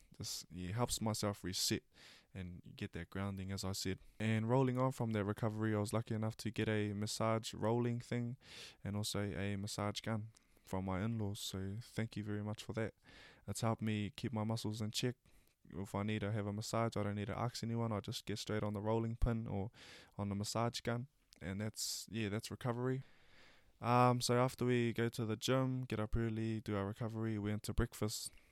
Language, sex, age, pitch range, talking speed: English, male, 20-39, 100-115 Hz, 210 wpm